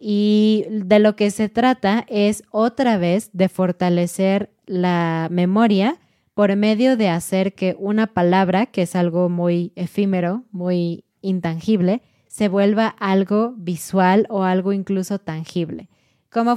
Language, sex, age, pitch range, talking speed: Spanish, female, 20-39, 180-215 Hz, 130 wpm